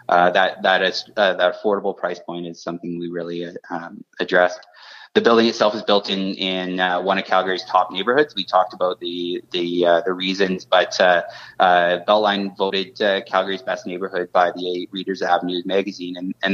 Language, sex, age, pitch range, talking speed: English, male, 30-49, 90-100 Hz, 195 wpm